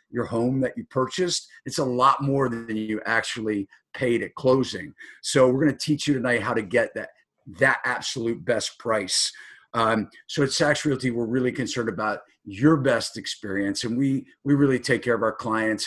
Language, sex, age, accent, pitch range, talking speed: English, male, 50-69, American, 105-130 Hz, 195 wpm